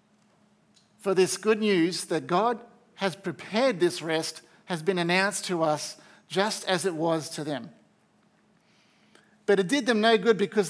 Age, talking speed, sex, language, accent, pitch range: 50-69, 155 wpm, male, English, Australian, 160-205 Hz